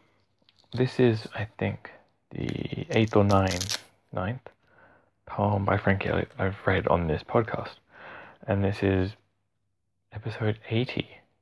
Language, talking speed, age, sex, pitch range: English, 120 wpm, 30-49, male, 95-110 Hz